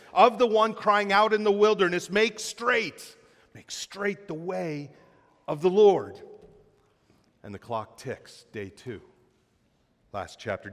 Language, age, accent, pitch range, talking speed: English, 40-59, American, 140-210 Hz, 140 wpm